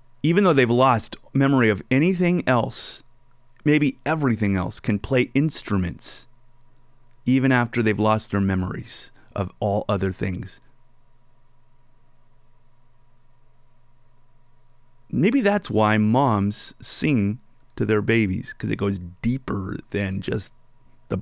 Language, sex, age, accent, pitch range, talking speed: English, male, 30-49, American, 110-120 Hz, 110 wpm